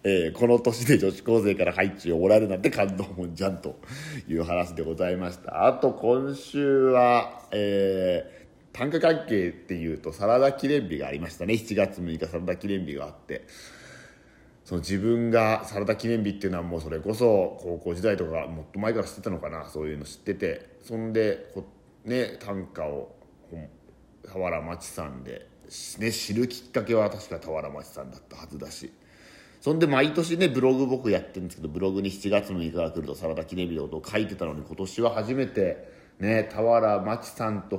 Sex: male